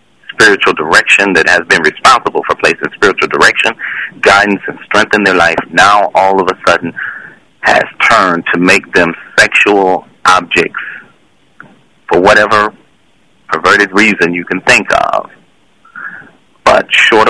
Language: English